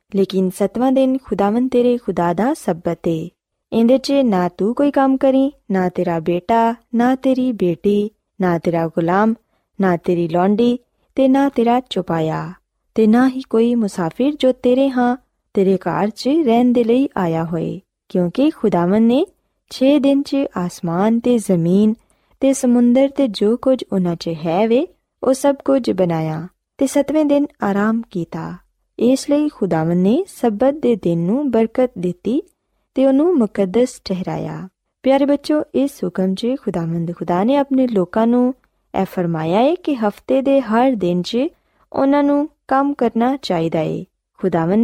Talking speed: 60 wpm